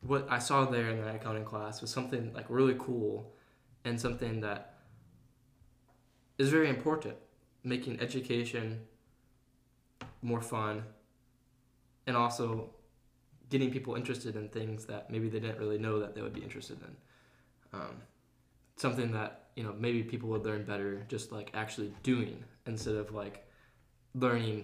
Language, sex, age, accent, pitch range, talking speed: English, male, 10-29, American, 110-125 Hz, 145 wpm